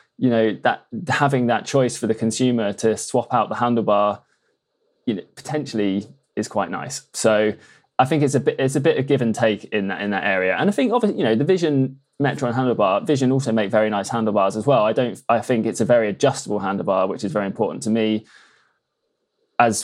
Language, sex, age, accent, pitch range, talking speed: English, male, 20-39, British, 105-125 Hz, 210 wpm